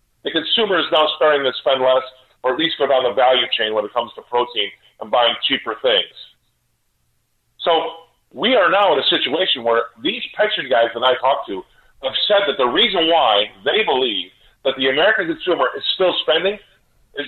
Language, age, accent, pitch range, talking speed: English, 40-59, American, 120-170 Hz, 195 wpm